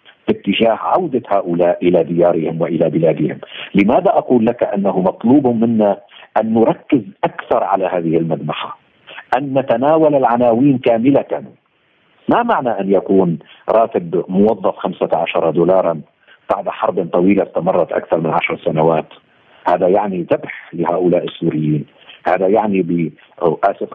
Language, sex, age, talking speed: Arabic, male, 50-69, 120 wpm